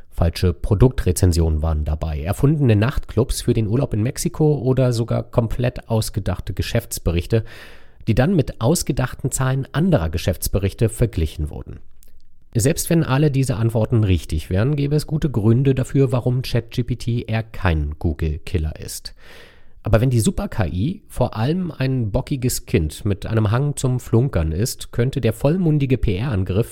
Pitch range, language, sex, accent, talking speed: 90-125 Hz, German, male, German, 140 wpm